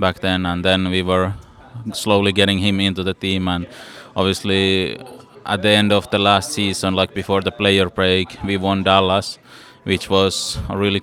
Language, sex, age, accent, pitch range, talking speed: English, male, 20-39, Finnish, 95-105 Hz, 180 wpm